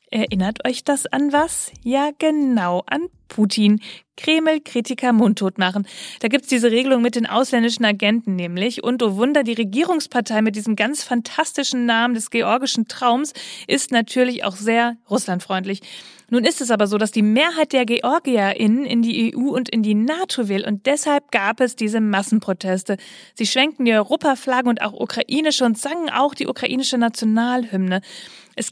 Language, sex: German, female